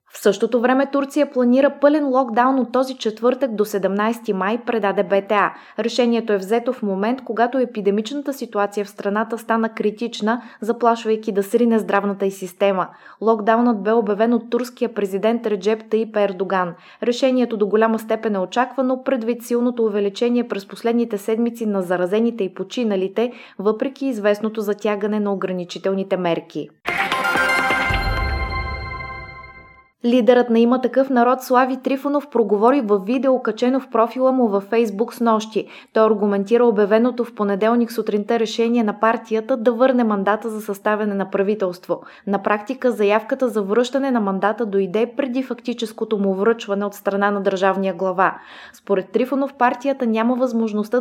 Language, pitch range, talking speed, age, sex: Bulgarian, 205-245 Hz, 140 wpm, 20-39, female